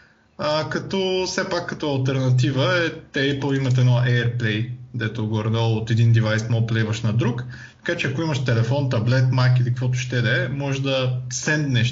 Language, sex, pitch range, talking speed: Bulgarian, male, 120-160 Hz, 170 wpm